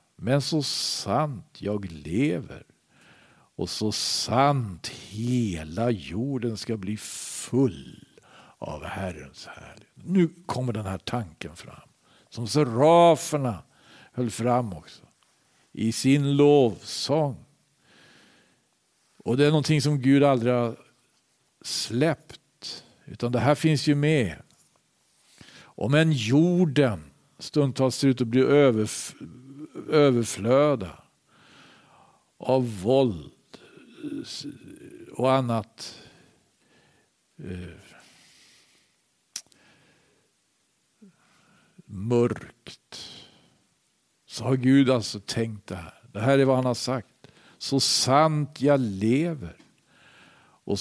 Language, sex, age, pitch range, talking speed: Swedish, male, 50-69, 110-145 Hz, 90 wpm